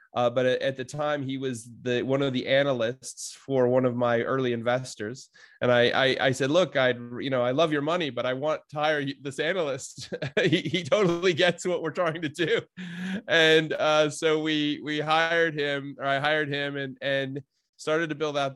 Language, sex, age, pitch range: English, male, 30-49, 125-150 Hz